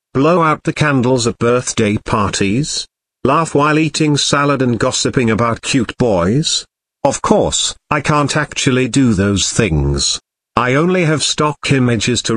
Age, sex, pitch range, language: 50-69, male, 110-150 Hz, English